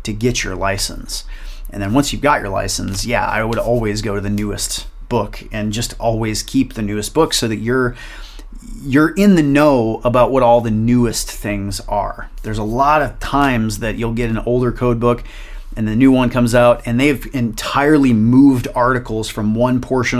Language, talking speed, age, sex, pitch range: English, 200 wpm, 30-49, male, 115-135 Hz